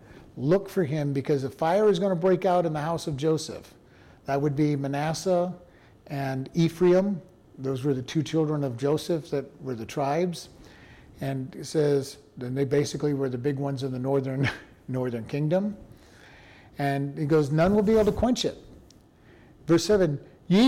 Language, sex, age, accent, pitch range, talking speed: English, male, 50-69, American, 135-180 Hz, 175 wpm